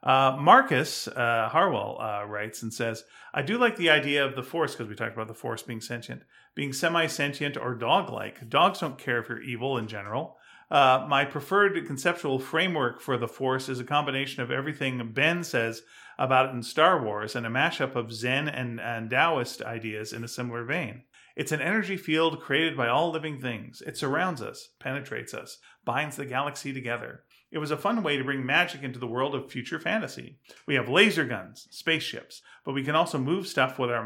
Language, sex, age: English, male, 40-59